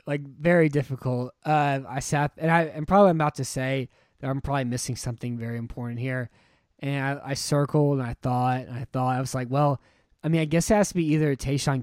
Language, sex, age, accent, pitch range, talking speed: English, male, 20-39, American, 125-145 Hz, 240 wpm